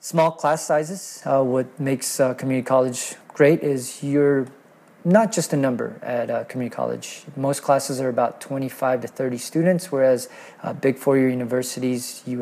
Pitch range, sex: 125-145 Hz, male